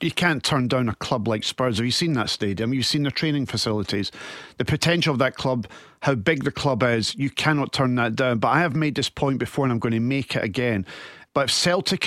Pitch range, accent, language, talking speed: 120-155 Hz, British, English, 250 wpm